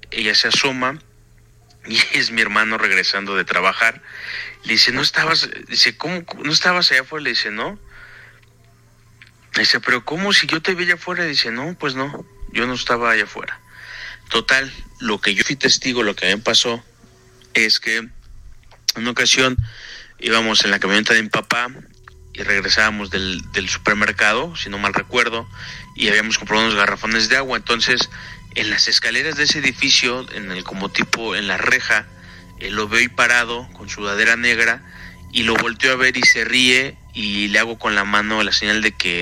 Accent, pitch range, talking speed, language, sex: Mexican, 105-125 Hz, 185 wpm, Spanish, male